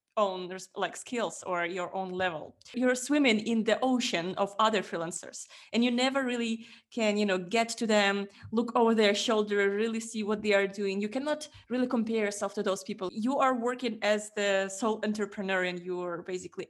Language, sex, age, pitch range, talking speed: English, female, 20-39, 185-225 Hz, 190 wpm